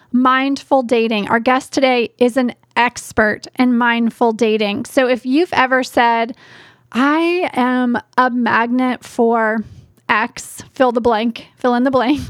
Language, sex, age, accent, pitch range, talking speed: English, female, 30-49, American, 230-285 Hz, 140 wpm